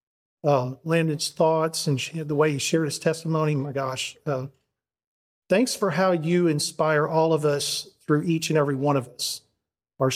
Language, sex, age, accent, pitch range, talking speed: English, male, 50-69, American, 140-165 Hz, 170 wpm